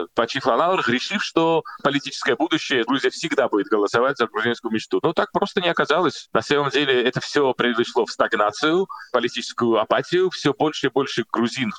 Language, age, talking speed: Russian, 30-49, 175 wpm